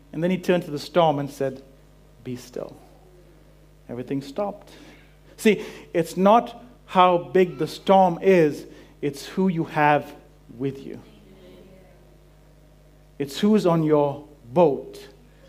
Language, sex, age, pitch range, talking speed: English, male, 50-69, 145-190 Hz, 130 wpm